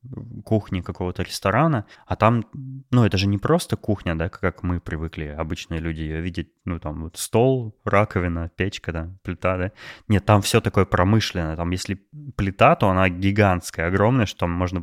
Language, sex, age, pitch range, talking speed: Russian, male, 20-39, 90-110 Hz, 175 wpm